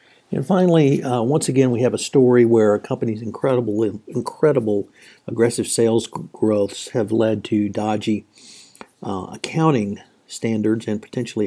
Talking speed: 135 wpm